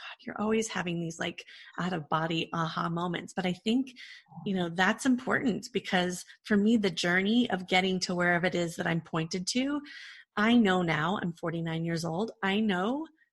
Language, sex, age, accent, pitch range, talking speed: English, female, 30-49, American, 175-220 Hz, 185 wpm